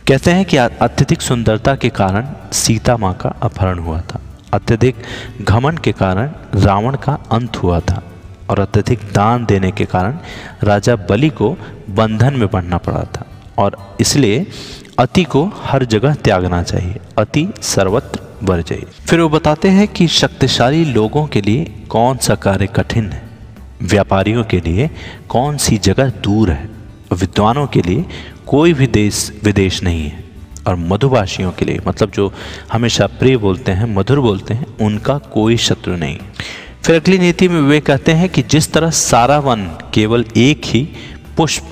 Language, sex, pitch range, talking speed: Hindi, male, 100-135 Hz, 160 wpm